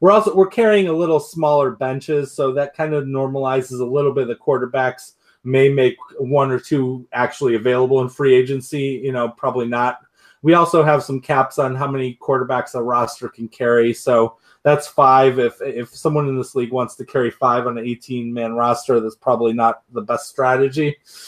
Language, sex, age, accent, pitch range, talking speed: English, male, 30-49, American, 125-150 Hz, 195 wpm